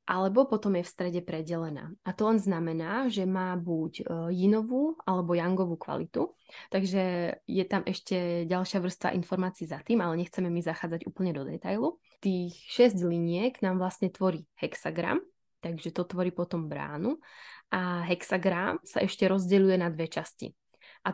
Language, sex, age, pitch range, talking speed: Czech, female, 20-39, 175-210 Hz, 155 wpm